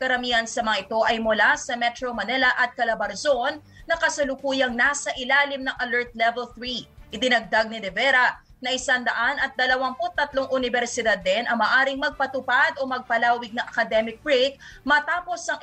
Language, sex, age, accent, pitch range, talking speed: English, female, 20-39, Filipino, 230-275 Hz, 150 wpm